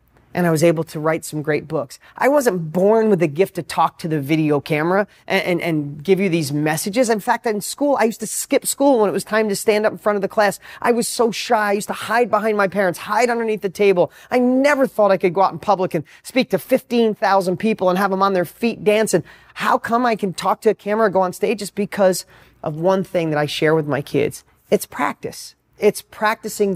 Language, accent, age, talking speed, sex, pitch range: English, American, 30-49, 250 wpm, male, 170-220 Hz